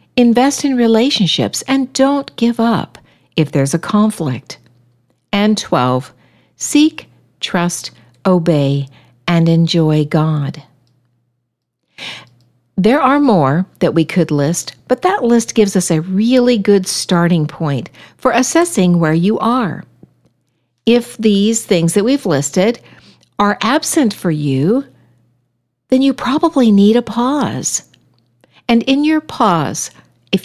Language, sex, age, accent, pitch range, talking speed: English, female, 60-79, American, 145-230 Hz, 120 wpm